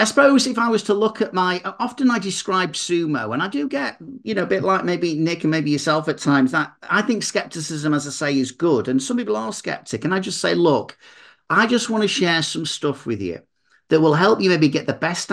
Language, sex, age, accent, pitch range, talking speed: English, male, 40-59, British, 130-180 Hz, 255 wpm